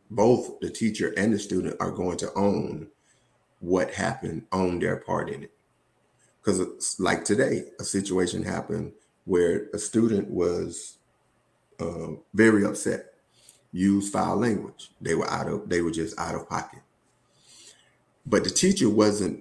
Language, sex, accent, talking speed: English, male, American, 150 wpm